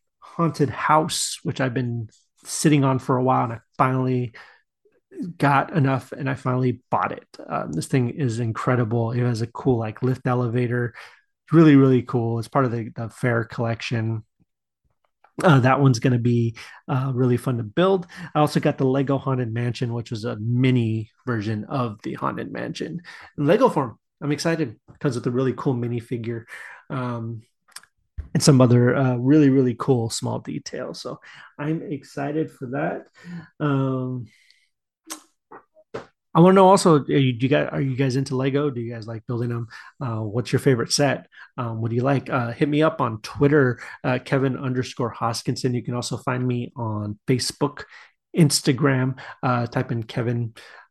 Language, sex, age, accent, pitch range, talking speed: English, male, 30-49, American, 120-140 Hz, 170 wpm